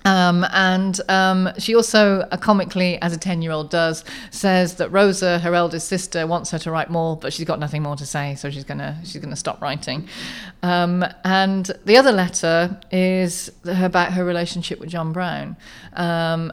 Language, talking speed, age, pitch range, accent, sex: English, 180 wpm, 40-59, 155-180 Hz, British, female